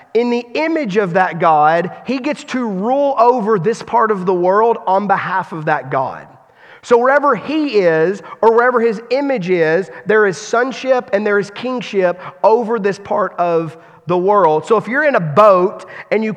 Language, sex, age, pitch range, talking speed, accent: English, male, 30-49, 185-250 Hz, 185 wpm, American